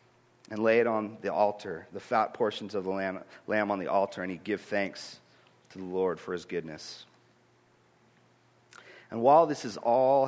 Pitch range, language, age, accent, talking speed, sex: 115-165 Hz, English, 40-59, American, 180 wpm, male